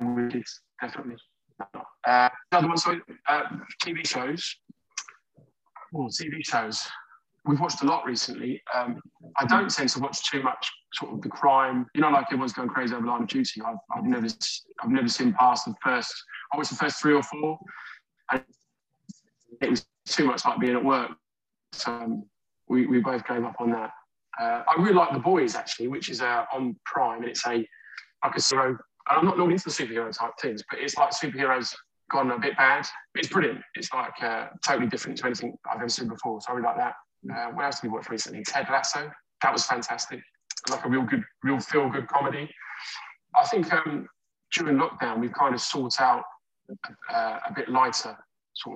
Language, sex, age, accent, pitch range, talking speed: English, male, 20-39, British, 120-175 Hz, 190 wpm